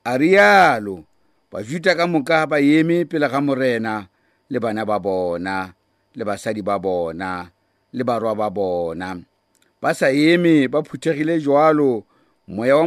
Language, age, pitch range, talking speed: English, 50-69, 100-150 Hz, 110 wpm